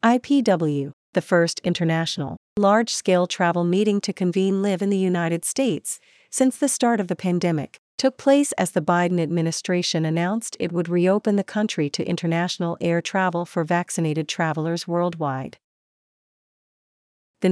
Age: 40-59